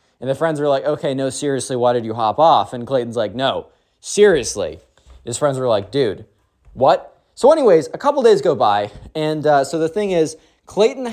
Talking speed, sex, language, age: 205 wpm, male, English, 20-39